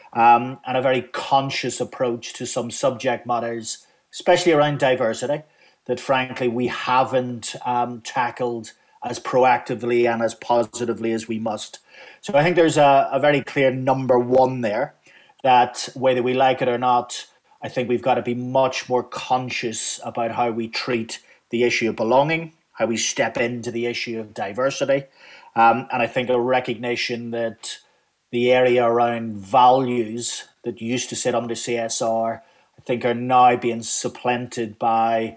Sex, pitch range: male, 115-125 Hz